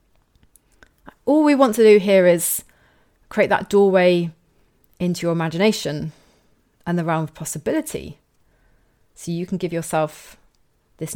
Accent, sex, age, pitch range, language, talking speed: British, female, 30-49, 175-220 Hz, English, 130 wpm